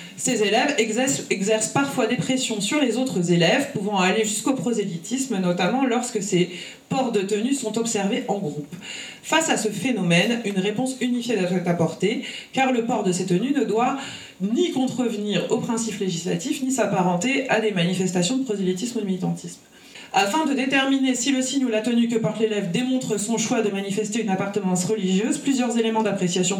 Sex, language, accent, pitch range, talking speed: female, French, French, 190-255 Hz, 180 wpm